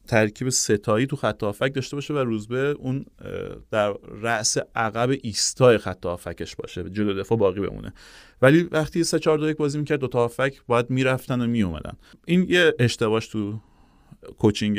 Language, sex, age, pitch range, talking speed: Persian, male, 30-49, 100-135 Hz, 155 wpm